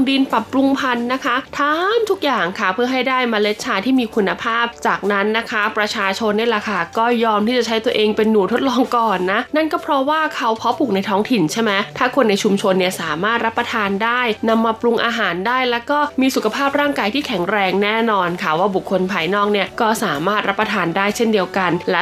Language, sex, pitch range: Thai, female, 200-250 Hz